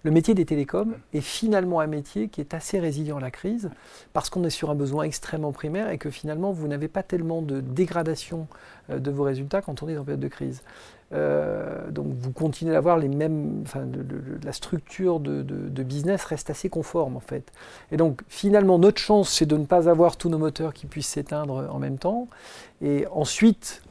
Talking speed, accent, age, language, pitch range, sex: 200 wpm, French, 40-59, French, 145-180 Hz, male